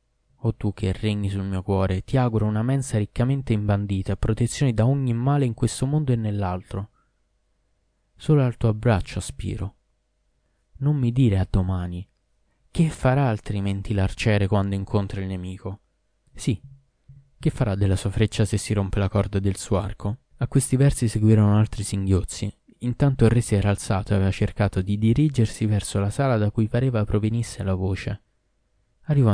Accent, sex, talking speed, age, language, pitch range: native, male, 165 wpm, 20-39, Italian, 100-120 Hz